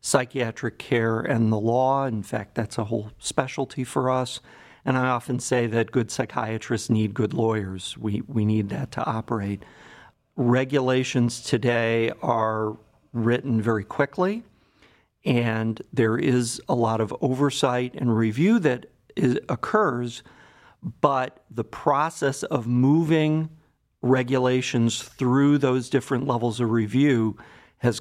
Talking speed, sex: 125 wpm, male